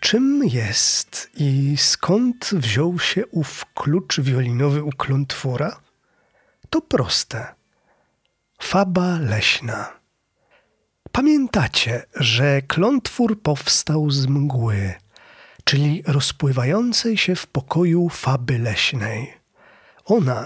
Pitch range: 130-190 Hz